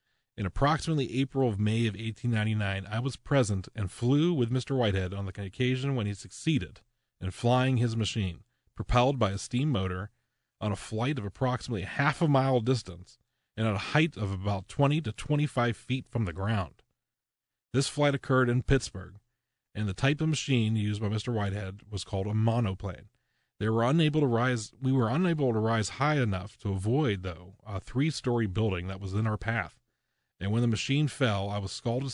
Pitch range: 100-125 Hz